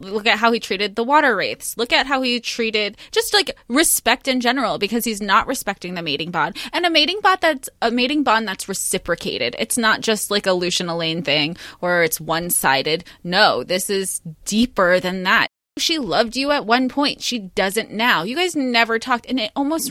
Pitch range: 190-255 Hz